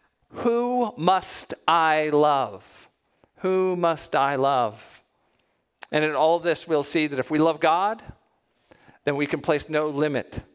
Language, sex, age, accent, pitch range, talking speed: English, male, 50-69, American, 160-215 Hz, 140 wpm